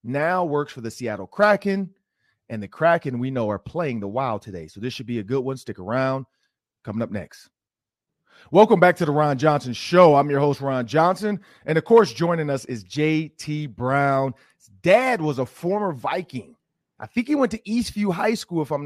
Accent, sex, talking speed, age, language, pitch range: American, male, 200 wpm, 30-49, English, 125-175 Hz